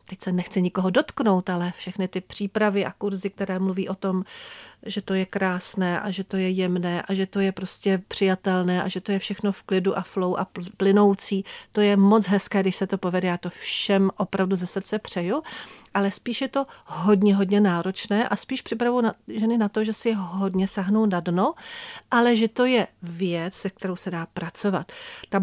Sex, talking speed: female, 205 wpm